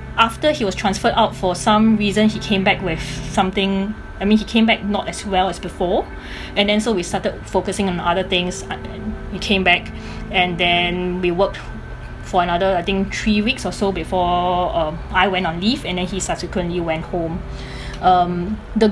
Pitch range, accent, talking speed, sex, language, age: 185-225 Hz, Malaysian, 195 wpm, female, English, 20-39